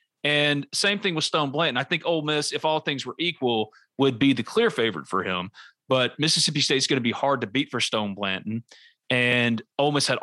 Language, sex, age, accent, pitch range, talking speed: English, male, 30-49, American, 120-145 Hz, 230 wpm